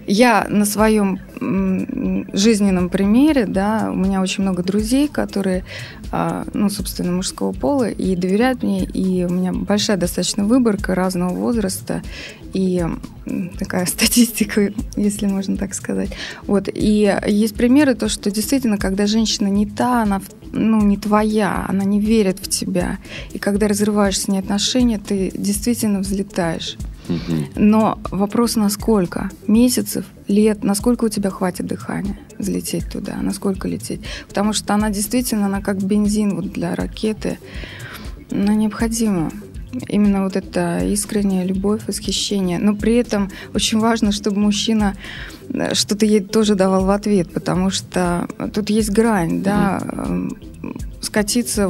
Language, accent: Russian, native